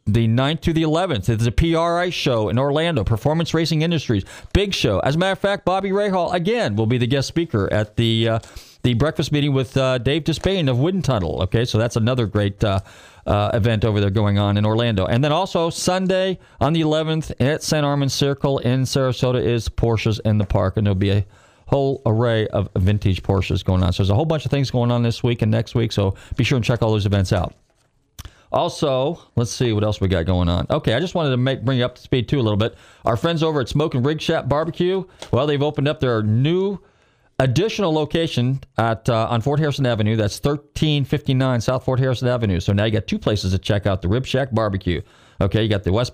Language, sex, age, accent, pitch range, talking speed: English, male, 40-59, American, 105-145 Hz, 235 wpm